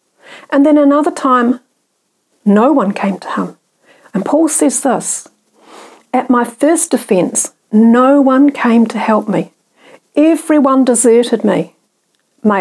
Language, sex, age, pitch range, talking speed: English, female, 60-79, 205-270 Hz, 130 wpm